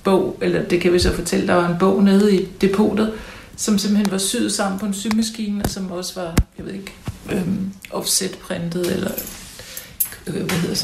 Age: 60-79